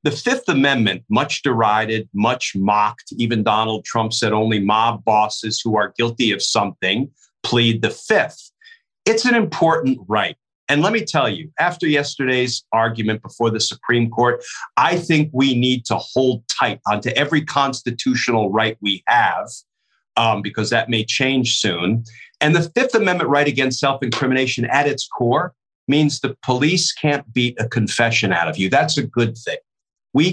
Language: English